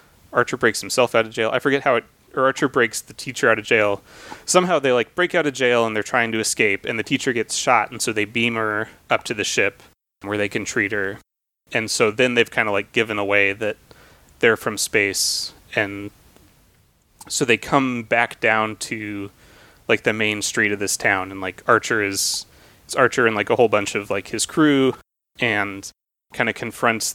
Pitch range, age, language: 100-120 Hz, 20-39, English